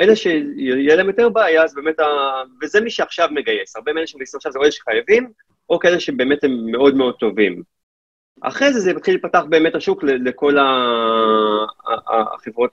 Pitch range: 120-165 Hz